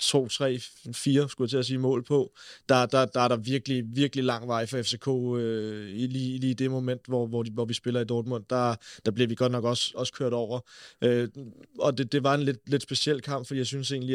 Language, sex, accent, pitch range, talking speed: Danish, male, native, 120-135 Hz, 235 wpm